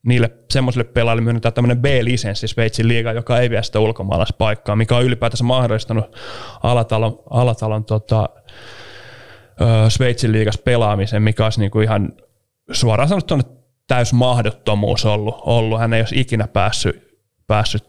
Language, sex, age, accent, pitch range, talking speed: Finnish, male, 30-49, native, 110-125 Hz, 135 wpm